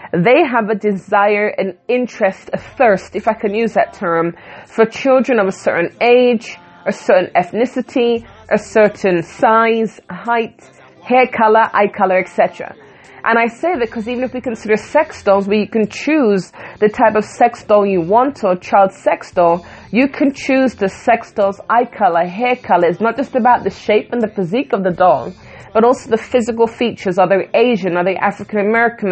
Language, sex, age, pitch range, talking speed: English, female, 30-49, 195-240 Hz, 190 wpm